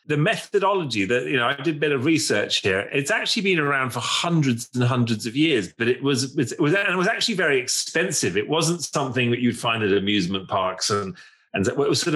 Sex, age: male, 30-49